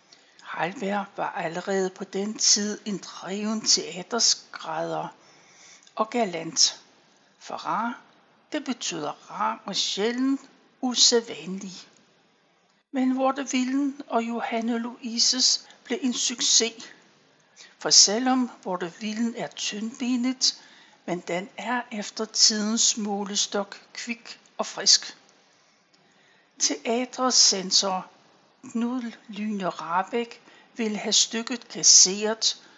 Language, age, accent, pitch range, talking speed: Danish, 60-79, native, 205-250 Hz, 90 wpm